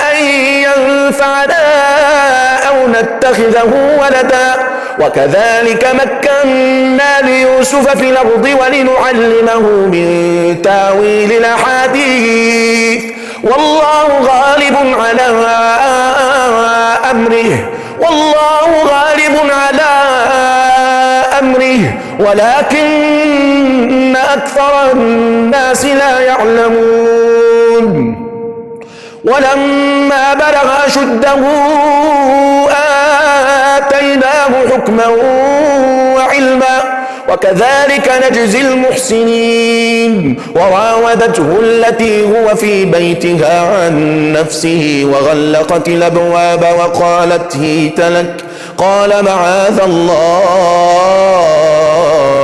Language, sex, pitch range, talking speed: Finnish, male, 220-275 Hz, 55 wpm